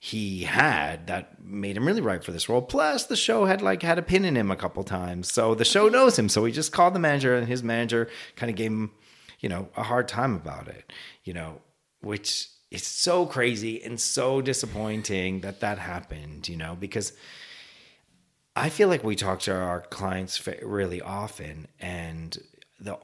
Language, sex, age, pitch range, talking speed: English, male, 30-49, 95-145 Hz, 195 wpm